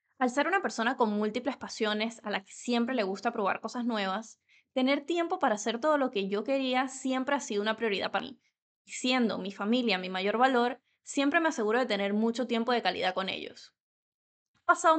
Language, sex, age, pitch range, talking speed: English, female, 20-39, 210-255 Hz, 205 wpm